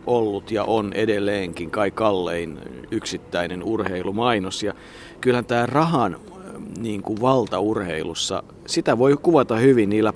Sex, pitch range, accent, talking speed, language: male, 95-120 Hz, native, 105 wpm, Finnish